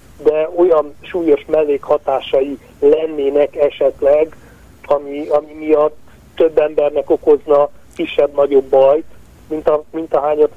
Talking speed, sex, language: 110 wpm, male, Hungarian